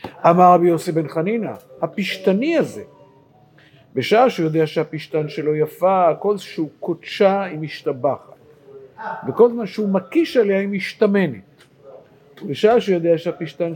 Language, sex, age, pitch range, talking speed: Hebrew, male, 50-69, 155-205 Hz, 120 wpm